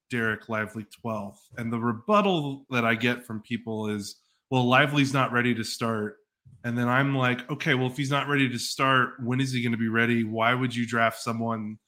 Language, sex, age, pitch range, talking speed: English, male, 20-39, 115-130 Hz, 210 wpm